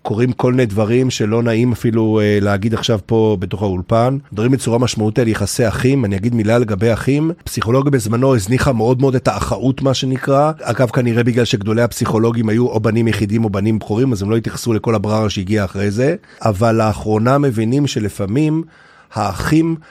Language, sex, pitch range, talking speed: Hebrew, male, 110-135 Hz, 175 wpm